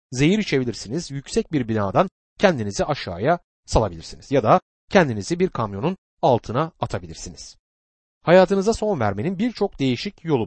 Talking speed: 120 wpm